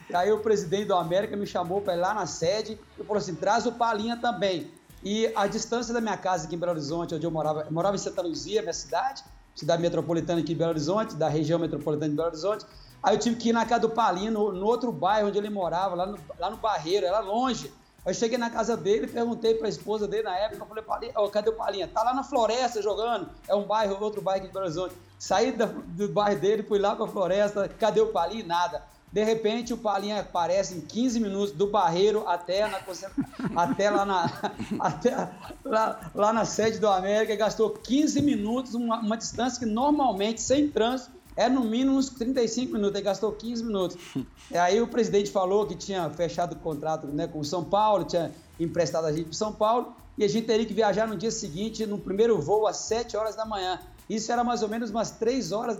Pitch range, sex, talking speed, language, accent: 185-225 Hz, male, 225 wpm, Portuguese, Brazilian